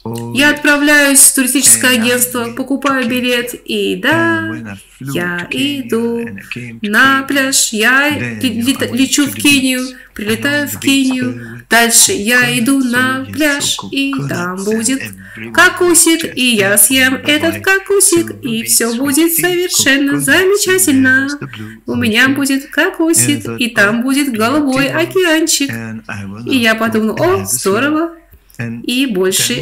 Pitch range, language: 215-285 Hz, Russian